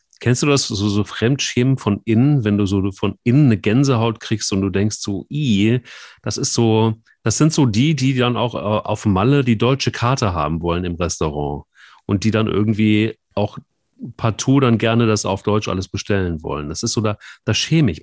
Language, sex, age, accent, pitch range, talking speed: German, male, 40-59, German, 105-125 Hz, 205 wpm